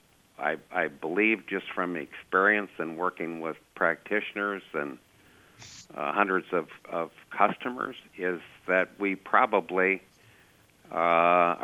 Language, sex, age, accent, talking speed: English, male, 60-79, American, 110 wpm